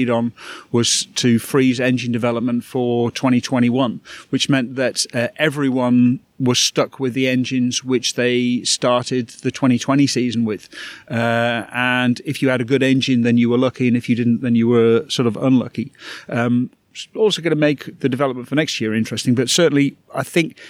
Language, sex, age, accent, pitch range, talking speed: English, male, 40-59, British, 125-150 Hz, 180 wpm